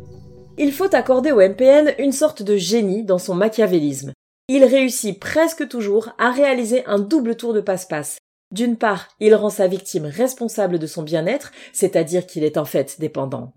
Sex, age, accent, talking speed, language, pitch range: female, 30-49, French, 175 wpm, French, 205-290 Hz